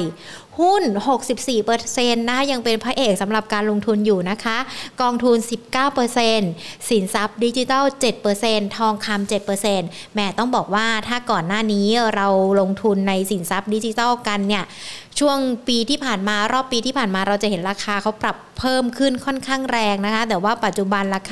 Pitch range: 210-255 Hz